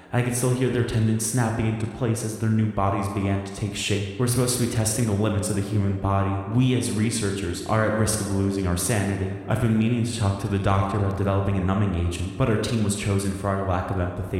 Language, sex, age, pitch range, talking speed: English, male, 20-39, 95-110 Hz, 255 wpm